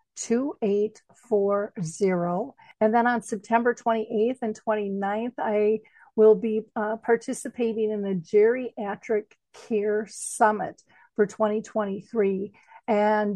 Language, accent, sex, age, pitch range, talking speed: English, American, female, 50-69, 200-230 Hz, 95 wpm